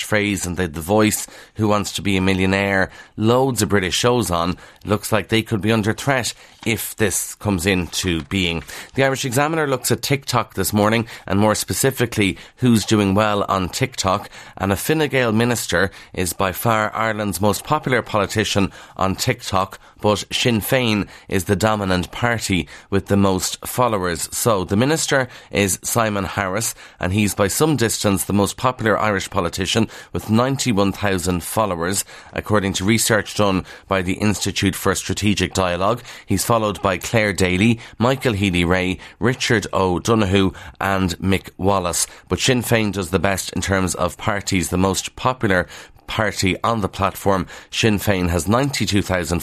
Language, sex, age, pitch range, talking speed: English, male, 30-49, 95-110 Hz, 160 wpm